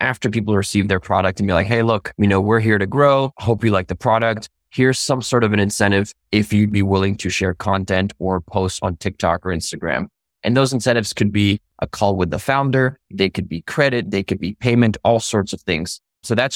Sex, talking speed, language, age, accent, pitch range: male, 230 wpm, English, 20-39, American, 95-110 Hz